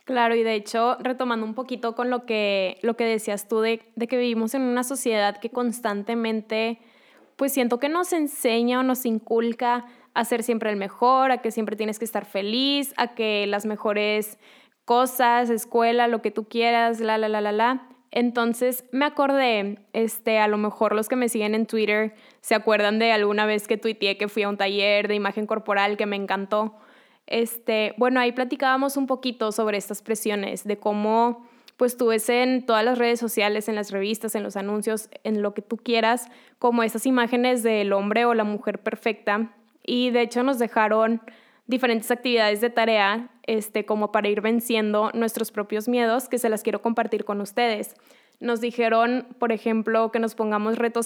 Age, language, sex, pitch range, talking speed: 10-29, Spanish, female, 215-240 Hz, 190 wpm